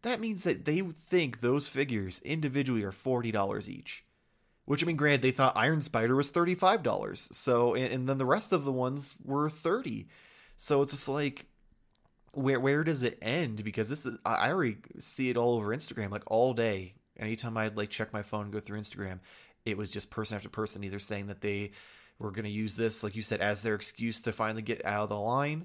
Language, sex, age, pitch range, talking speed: English, male, 20-39, 105-135 Hz, 220 wpm